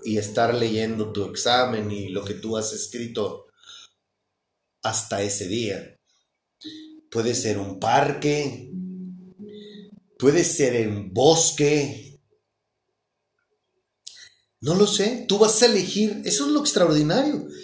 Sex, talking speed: male, 110 wpm